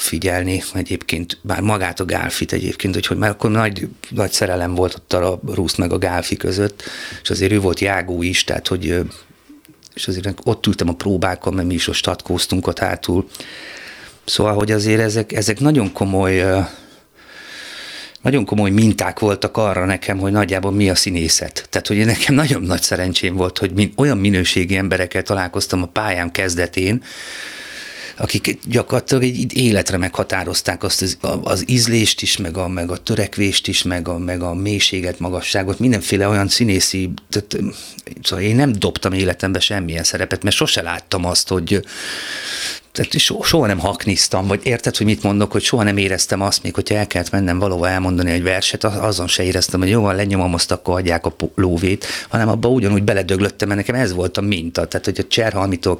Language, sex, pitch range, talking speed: Hungarian, male, 90-105 Hz, 175 wpm